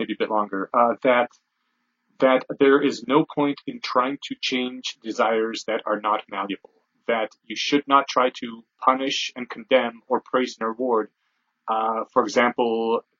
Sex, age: male, 30-49